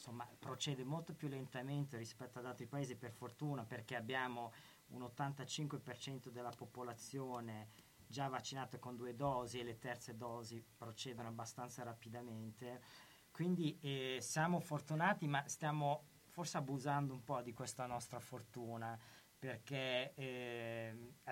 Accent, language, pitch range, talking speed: native, Italian, 120-145 Hz, 125 wpm